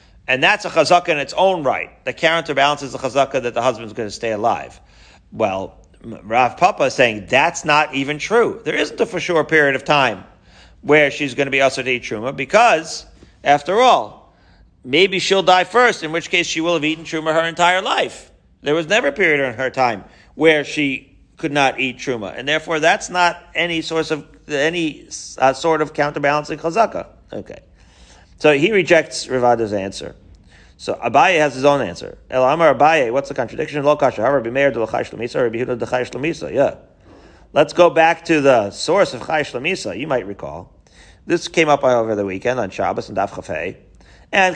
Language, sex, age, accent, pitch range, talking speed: English, male, 40-59, American, 130-165 Hz, 180 wpm